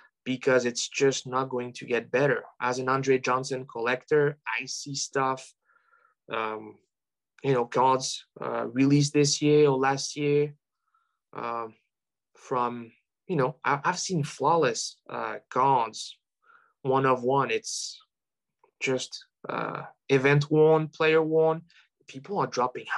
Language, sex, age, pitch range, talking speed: English, male, 20-39, 125-150 Hz, 130 wpm